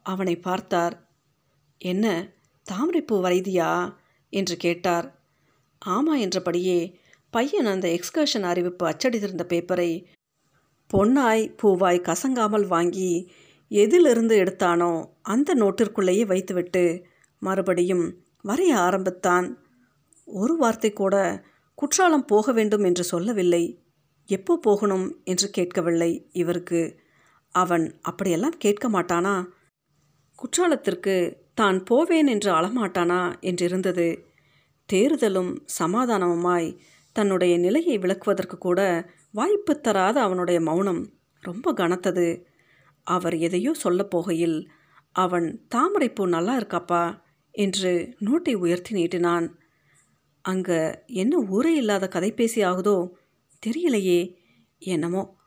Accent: native